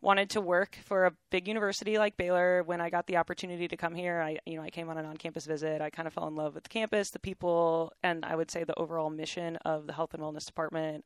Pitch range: 160-185 Hz